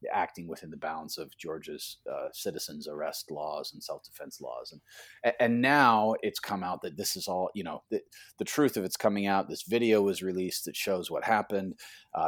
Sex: male